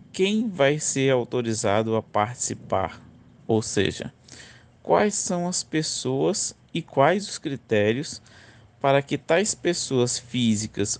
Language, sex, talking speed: Portuguese, male, 115 wpm